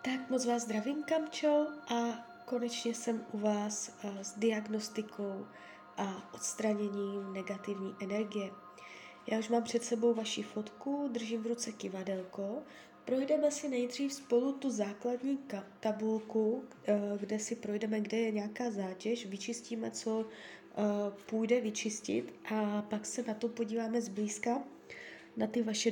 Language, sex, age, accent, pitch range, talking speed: Czech, female, 20-39, native, 200-230 Hz, 125 wpm